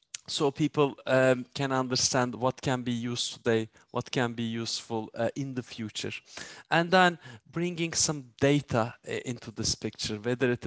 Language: English